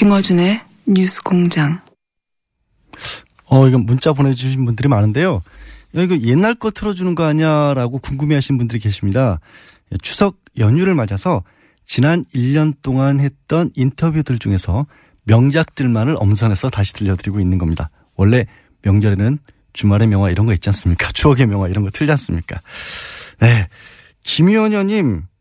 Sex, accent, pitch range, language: male, native, 100-155 Hz, Korean